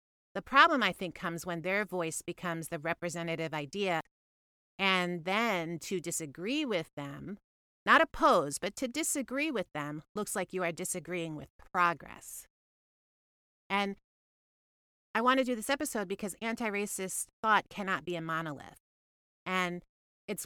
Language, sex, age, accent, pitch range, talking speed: English, female, 30-49, American, 165-215 Hz, 140 wpm